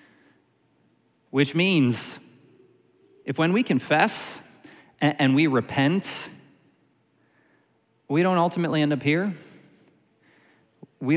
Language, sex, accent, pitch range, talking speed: English, male, American, 130-165 Hz, 85 wpm